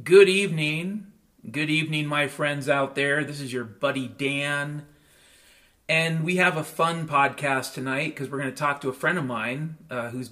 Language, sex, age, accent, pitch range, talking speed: English, male, 40-59, American, 130-155 Hz, 185 wpm